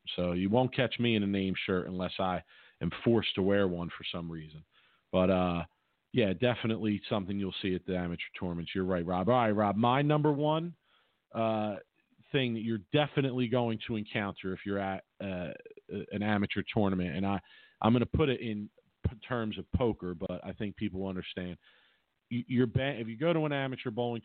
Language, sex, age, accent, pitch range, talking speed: English, male, 40-59, American, 95-115 Hz, 195 wpm